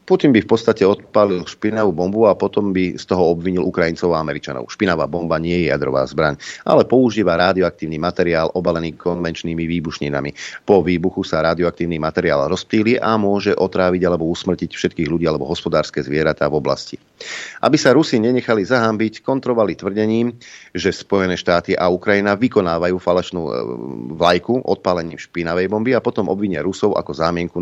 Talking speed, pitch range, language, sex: 155 wpm, 80-95 Hz, Slovak, male